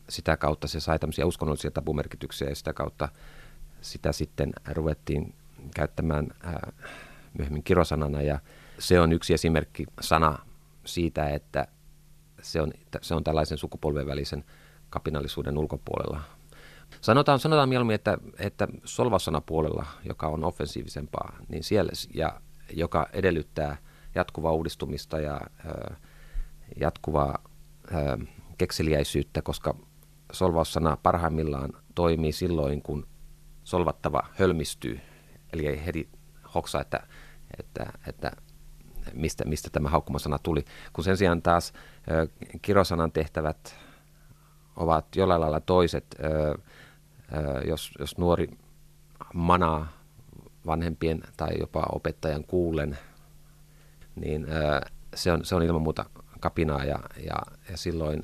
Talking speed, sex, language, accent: 110 wpm, male, Finnish, native